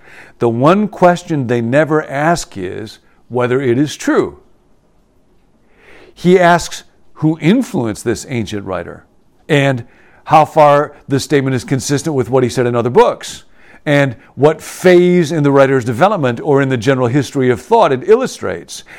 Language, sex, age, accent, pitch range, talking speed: English, male, 50-69, American, 125-160 Hz, 150 wpm